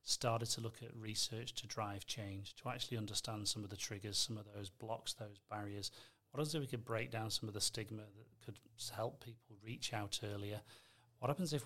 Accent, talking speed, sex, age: British, 215 wpm, male, 40-59